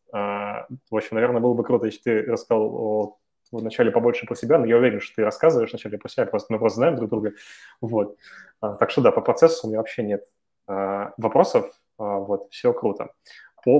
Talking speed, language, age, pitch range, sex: 180 wpm, Russian, 20-39, 110-145 Hz, male